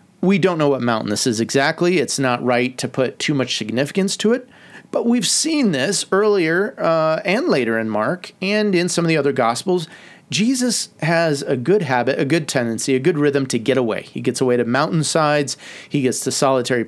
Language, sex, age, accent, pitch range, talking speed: English, male, 30-49, American, 130-180 Hz, 205 wpm